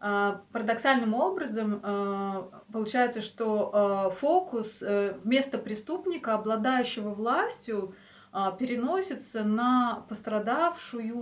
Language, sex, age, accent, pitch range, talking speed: Russian, female, 20-39, native, 200-235 Hz, 70 wpm